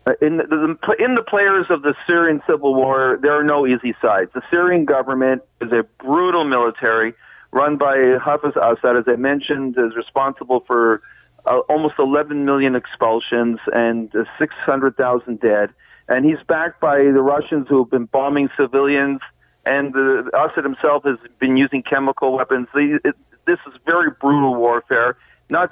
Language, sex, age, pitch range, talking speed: English, male, 40-59, 135-160 Hz, 155 wpm